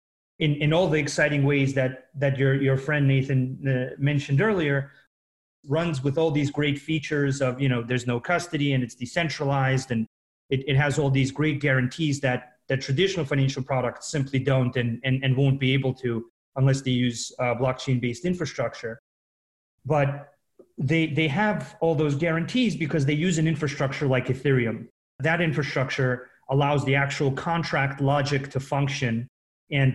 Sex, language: male, English